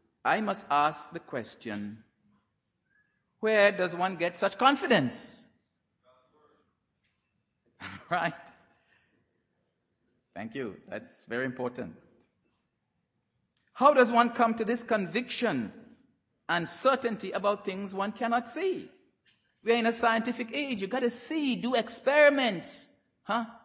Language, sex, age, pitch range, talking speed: English, male, 50-69, 155-245 Hz, 105 wpm